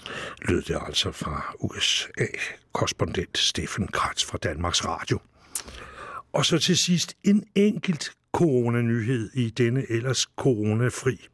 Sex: male